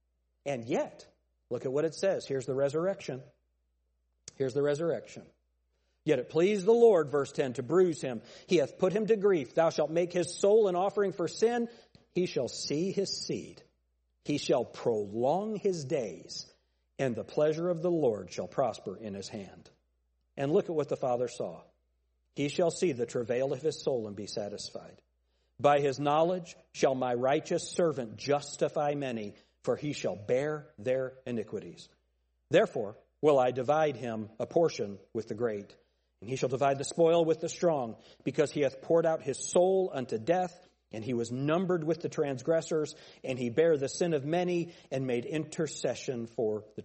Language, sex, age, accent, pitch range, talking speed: English, male, 50-69, American, 110-180 Hz, 180 wpm